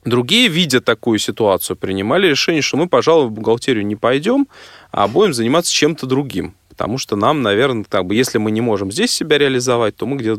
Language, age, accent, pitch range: Russian, 20-39, native, 105-145 Hz